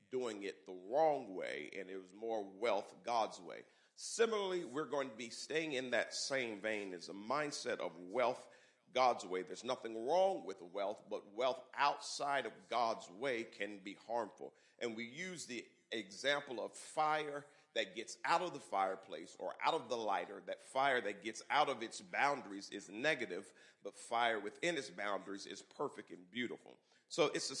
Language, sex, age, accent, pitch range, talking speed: English, male, 40-59, American, 105-155 Hz, 180 wpm